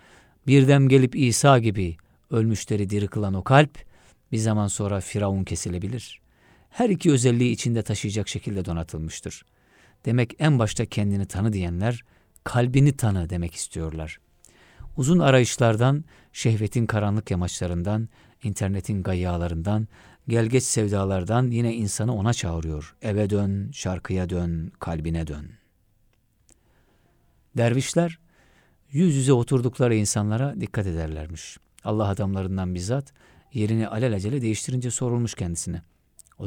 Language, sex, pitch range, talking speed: Turkish, male, 90-120 Hz, 110 wpm